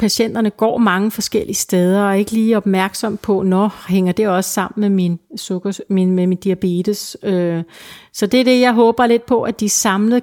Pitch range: 185-220 Hz